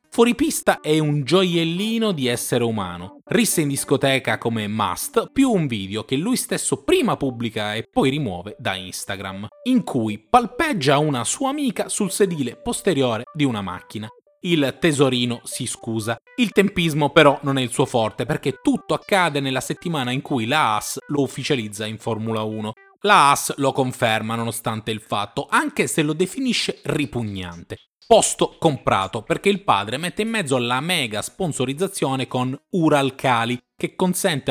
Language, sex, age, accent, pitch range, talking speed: Italian, male, 30-49, native, 115-190 Hz, 160 wpm